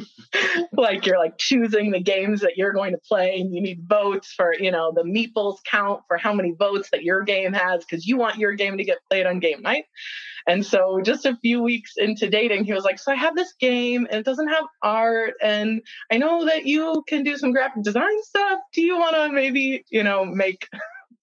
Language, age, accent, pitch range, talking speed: English, 20-39, American, 175-235 Hz, 225 wpm